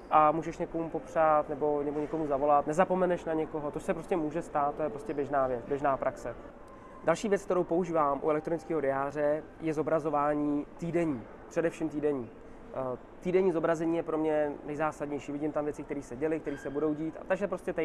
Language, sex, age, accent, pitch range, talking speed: Czech, male, 20-39, native, 145-165 Hz, 185 wpm